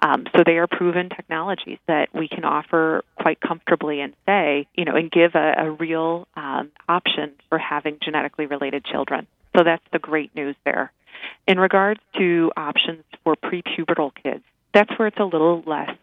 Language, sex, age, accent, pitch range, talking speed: English, female, 30-49, American, 155-185 Hz, 175 wpm